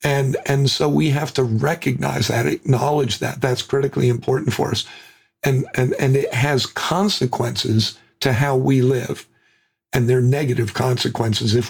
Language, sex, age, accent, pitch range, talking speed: English, male, 50-69, American, 120-145 Hz, 155 wpm